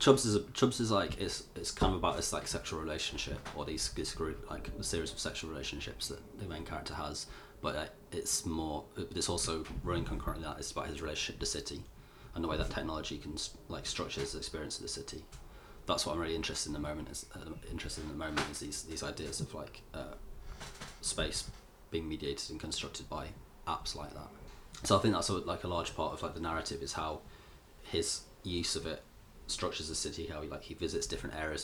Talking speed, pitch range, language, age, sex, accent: 225 wpm, 75-90 Hz, English, 30-49, male, British